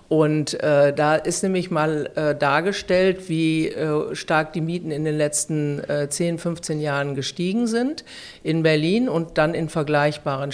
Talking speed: 160 wpm